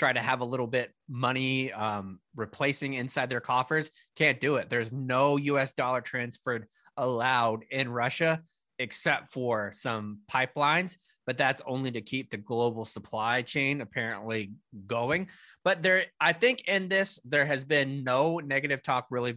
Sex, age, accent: male, 20-39, American